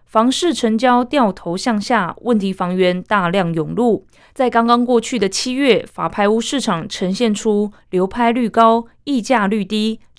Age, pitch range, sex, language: 20-39, 180-230 Hz, female, Chinese